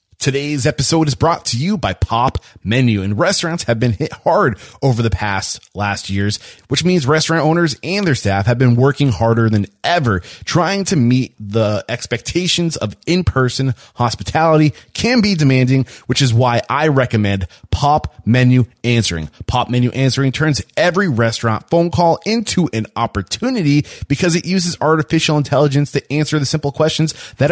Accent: American